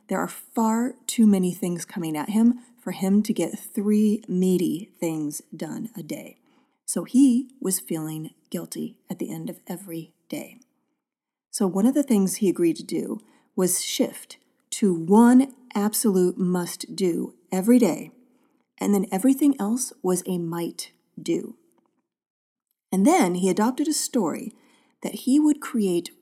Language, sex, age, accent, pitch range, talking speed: English, female, 40-59, American, 185-255 Hz, 145 wpm